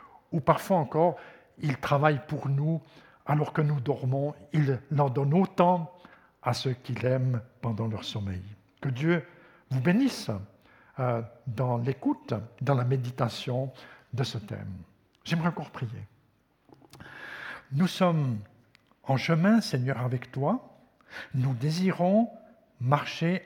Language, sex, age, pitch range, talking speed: French, male, 60-79, 125-170 Hz, 120 wpm